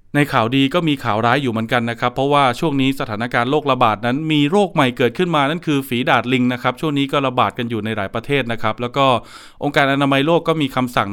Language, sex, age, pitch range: Thai, male, 20-39, 120-150 Hz